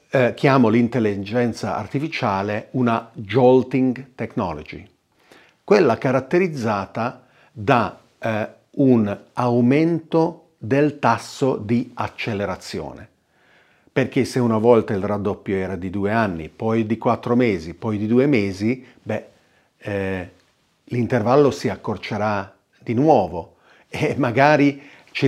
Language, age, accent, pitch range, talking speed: Italian, 40-59, native, 105-135 Hz, 105 wpm